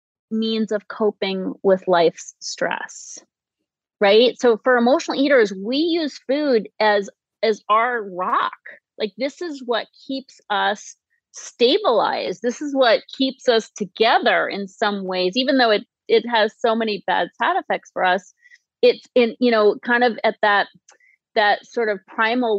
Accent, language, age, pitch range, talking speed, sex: American, English, 30-49, 205-275 Hz, 155 wpm, female